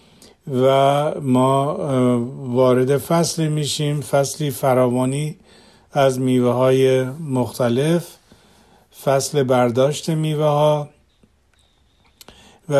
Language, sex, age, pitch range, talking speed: Persian, male, 50-69, 130-150 Hz, 65 wpm